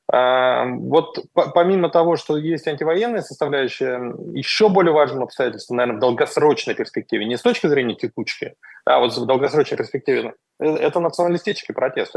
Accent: native